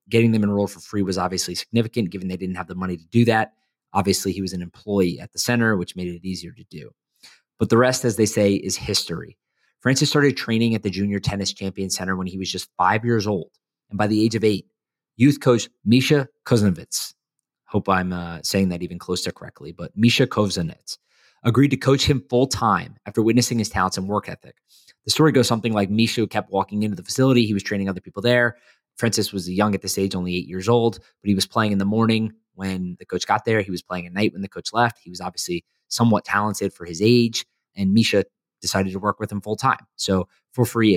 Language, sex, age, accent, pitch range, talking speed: English, male, 30-49, American, 95-115 Hz, 230 wpm